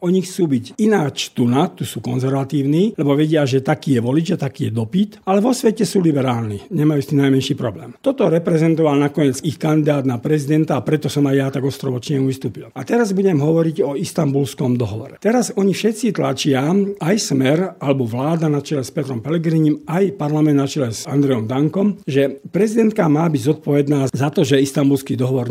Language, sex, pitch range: Slovak, male, 135-170 Hz